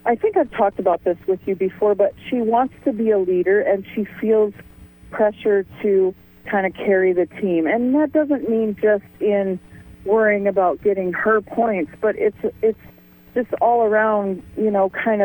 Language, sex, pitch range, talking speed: English, female, 190-230 Hz, 180 wpm